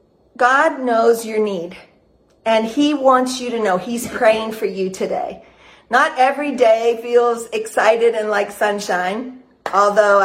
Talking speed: 140 wpm